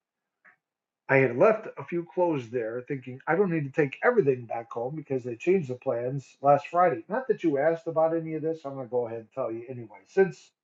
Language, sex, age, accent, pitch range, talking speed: English, male, 40-59, American, 140-180 Hz, 225 wpm